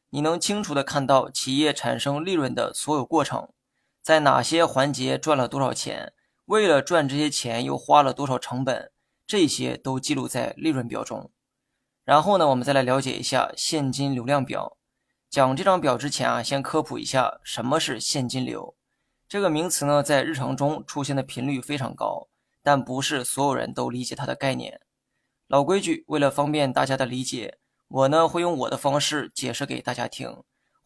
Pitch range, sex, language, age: 130-150 Hz, male, Chinese, 20-39